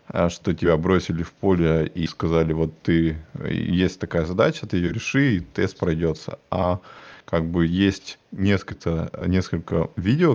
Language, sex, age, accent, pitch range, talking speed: Russian, male, 20-39, native, 80-100 Hz, 145 wpm